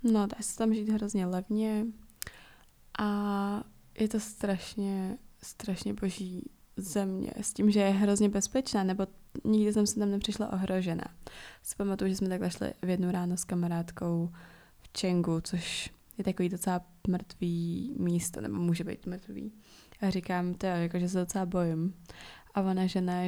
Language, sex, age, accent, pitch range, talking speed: Czech, female, 20-39, native, 180-200 Hz, 160 wpm